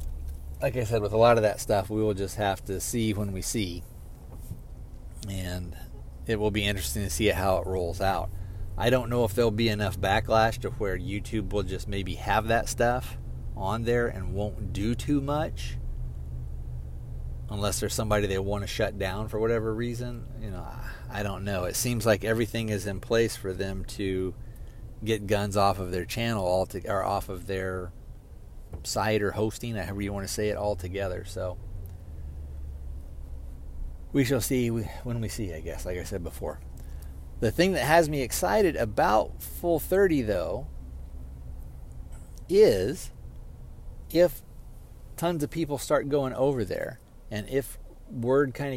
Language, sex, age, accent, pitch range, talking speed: English, male, 40-59, American, 90-115 Hz, 170 wpm